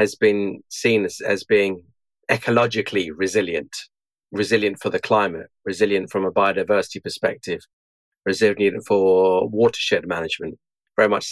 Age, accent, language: 40-59, British, English